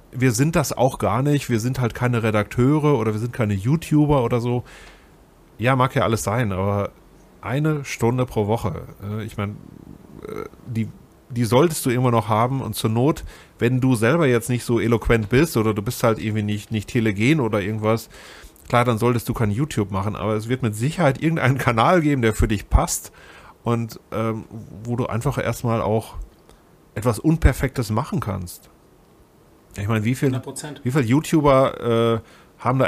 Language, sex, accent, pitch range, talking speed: German, male, German, 110-130 Hz, 180 wpm